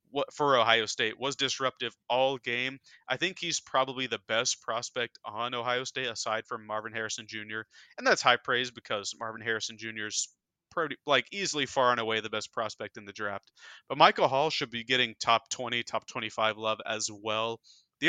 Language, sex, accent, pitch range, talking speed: English, male, American, 110-130 Hz, 180 wpm